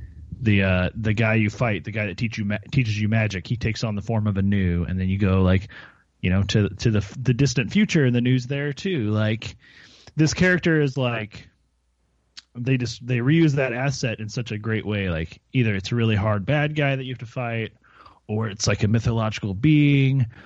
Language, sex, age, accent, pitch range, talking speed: English, male, 30-49, American, 100-130 Hz, 220 wpm